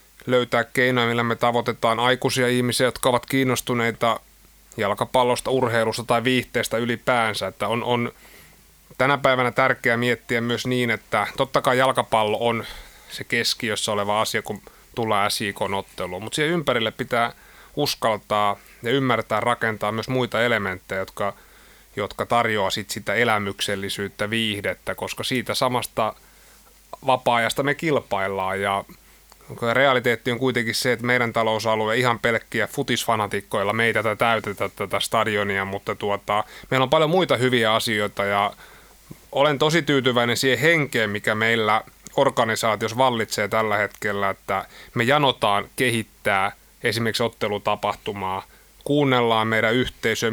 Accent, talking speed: native, 125 wpm